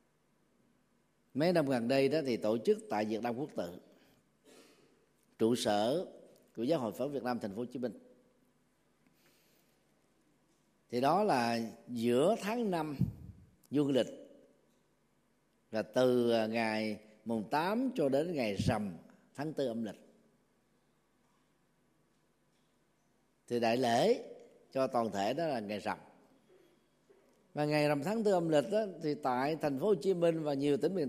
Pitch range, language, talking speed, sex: 125-210 Hz, Vietnamese, 145 wpm, male